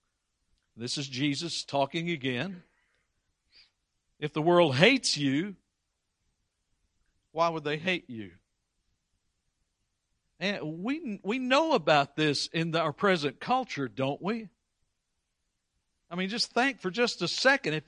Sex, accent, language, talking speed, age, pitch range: male, American, English, 125 wpm, 60-79, 145-210 Hz